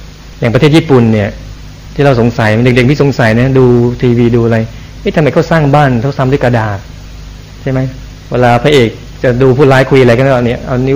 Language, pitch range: Thai, 120-145 Hz